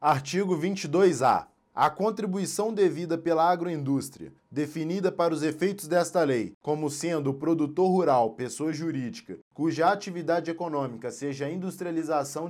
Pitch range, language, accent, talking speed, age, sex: 140-170 Hz, Portuguese, Brazilian, 125 wpm, 20-39, male